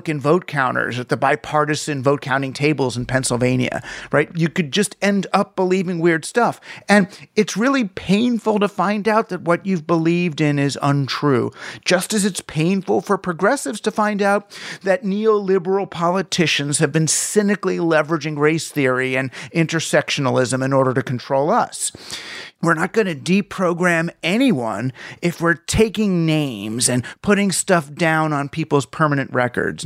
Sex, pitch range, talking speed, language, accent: male, 135-190 Hz, 155 wpm, English, American